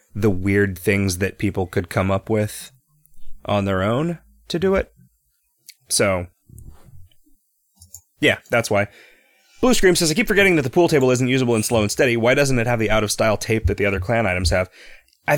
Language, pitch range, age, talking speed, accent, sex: English, 90-130 Hz, 30-49, 200 wpm, American, male